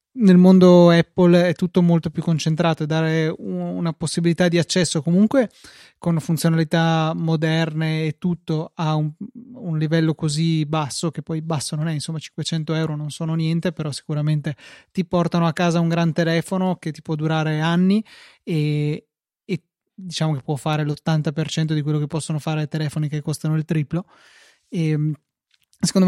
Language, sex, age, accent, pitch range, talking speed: Italian, male, 20-39, native, 160-180 Hz, 165 wpm